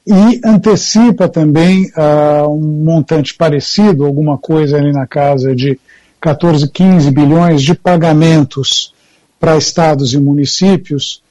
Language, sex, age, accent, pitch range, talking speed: Portuguese, male, 60-79, Brazilian, 150-185 Hz, 115 wpm